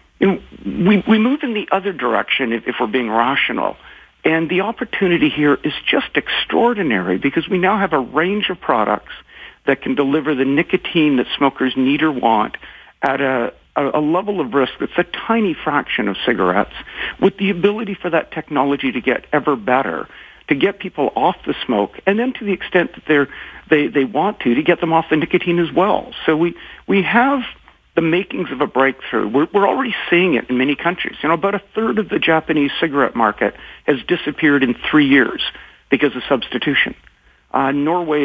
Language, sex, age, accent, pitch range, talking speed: English, male, 50-69, American, 130-180 Hz, 190 wpm